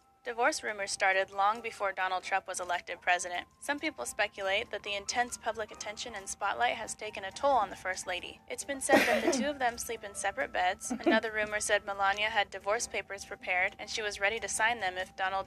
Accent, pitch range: American, 195-240 Hz